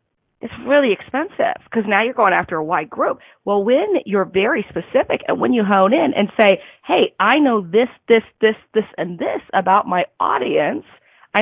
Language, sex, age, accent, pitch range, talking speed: English, female, 40-59, American, 175-225 Hz, 190 wpm